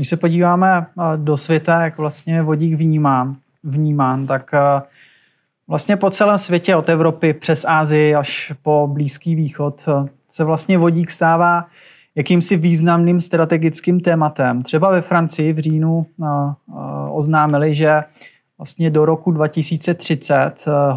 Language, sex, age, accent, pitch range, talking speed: Czech, male, 30-49, native, 150-170 Hz, 120 wpm